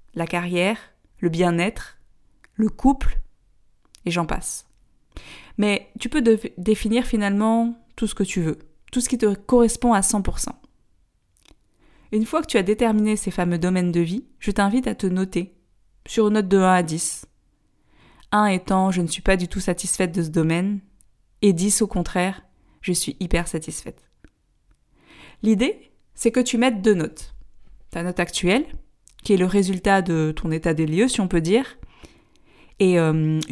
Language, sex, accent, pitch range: French, female, French, 175-220 Hz